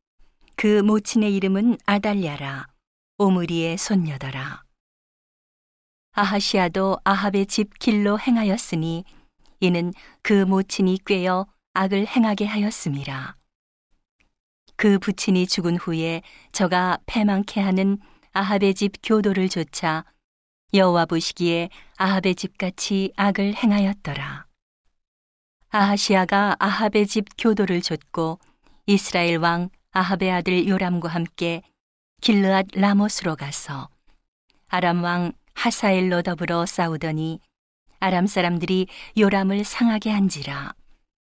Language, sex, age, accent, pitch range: Korean, female, 40-59, native, 170-205 Hz